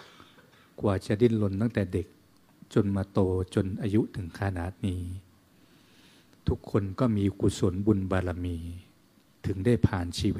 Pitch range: 90-110 Hz